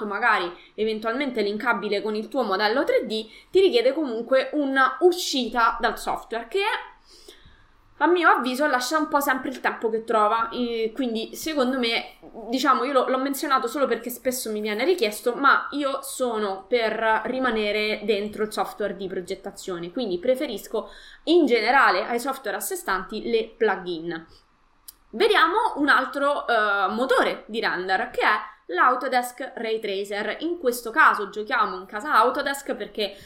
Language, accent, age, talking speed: Italian, native, 20-39, 145 wpm